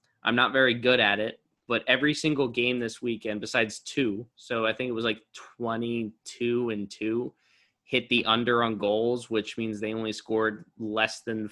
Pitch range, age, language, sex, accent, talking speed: 110-120 Hz, 20-39, English, male, American, 175 wpm